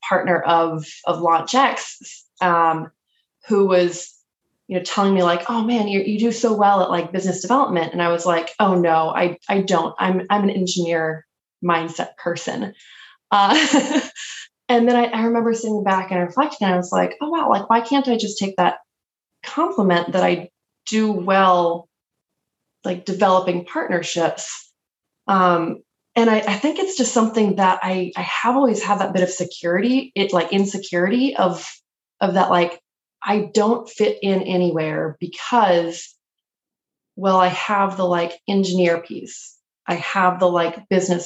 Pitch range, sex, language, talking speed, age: 175-220 Hz, female, English, 165 wpm, 20-39